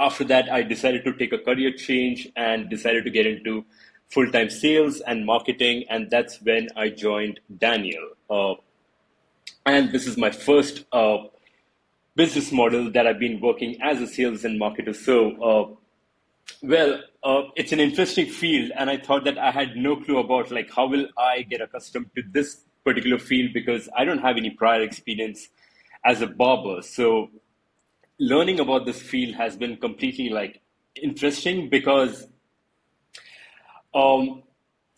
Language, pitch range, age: English, 115-140 Hz, 30-49